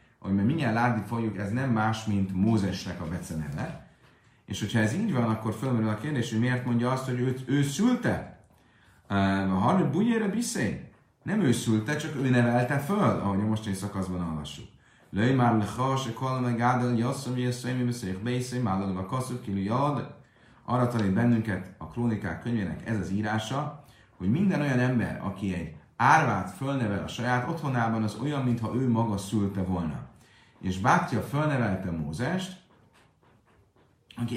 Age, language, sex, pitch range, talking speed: 30-49, Hungarian, male, 95-125 Hz, 150 wpm